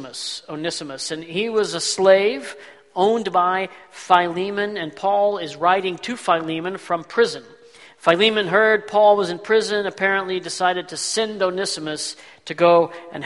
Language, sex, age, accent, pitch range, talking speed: English, male, 50-69, American, 160-205 Hz, 140 wpm